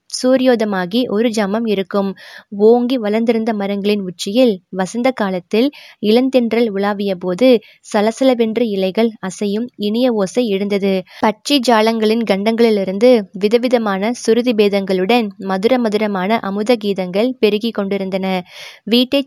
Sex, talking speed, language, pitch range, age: female, 85 wpm, Tamil, 200-235 Hz, 20-39